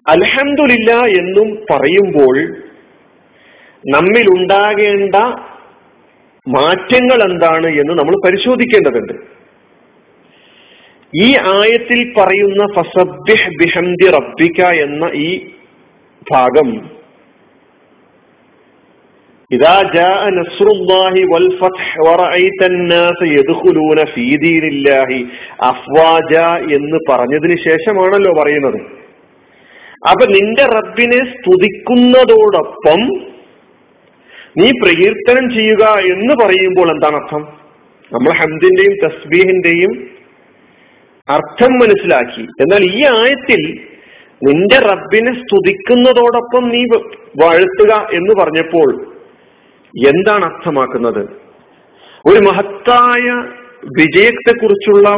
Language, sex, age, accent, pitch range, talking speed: Malayalam, male, 40-59, native, 175-255 Hz, 60 wpm